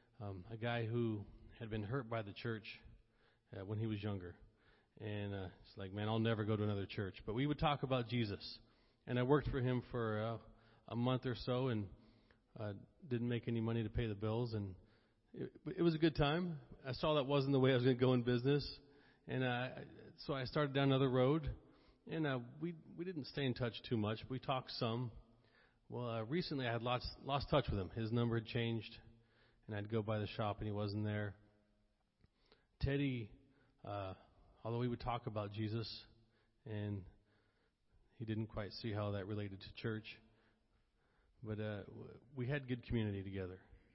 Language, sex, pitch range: English, male, 105-125 Hz